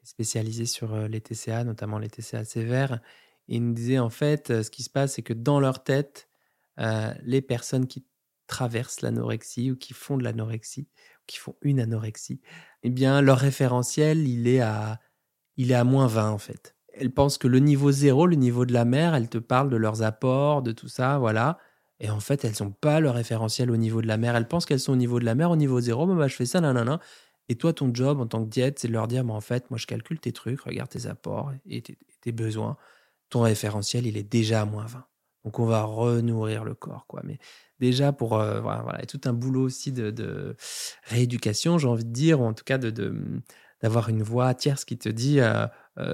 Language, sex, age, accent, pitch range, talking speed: French, male, 20-39, French, 115-135 Hz, 230 wpm